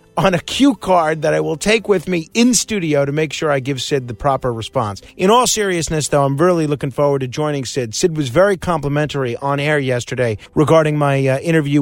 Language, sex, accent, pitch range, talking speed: English, male, American, 130-170 Hz, 220 wpm